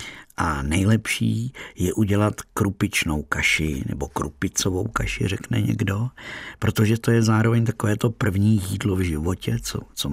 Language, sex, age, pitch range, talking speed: Czech, male, 50-69, 90-110 Hz, 135 wpm